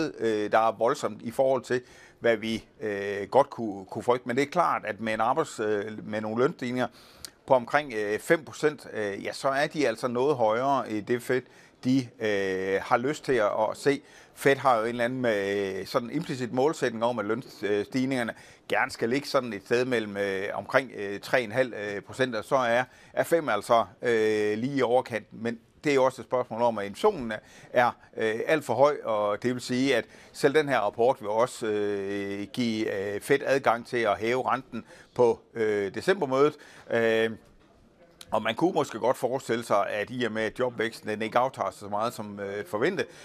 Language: Danish